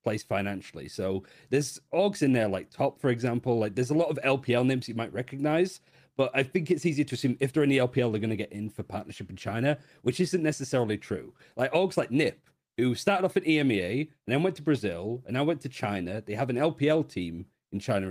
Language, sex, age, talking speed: English, male, 40-59, 240 wpm